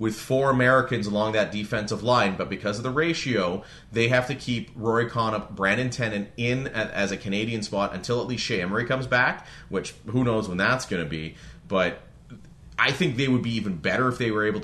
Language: English